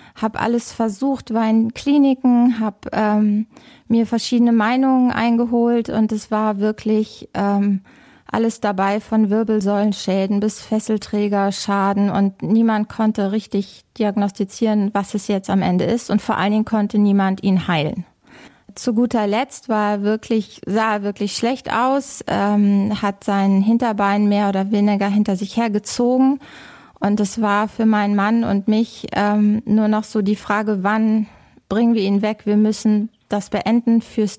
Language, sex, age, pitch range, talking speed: German, female, 20-39, 205-235 Hz, 155 wpm